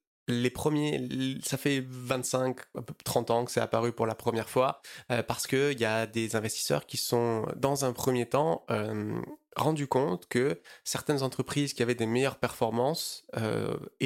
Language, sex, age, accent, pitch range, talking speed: French, male, 20-39, French, 120-135 Hz, 160 wpm